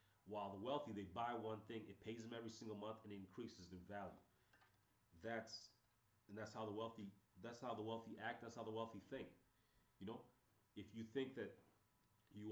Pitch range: 100-115 Hz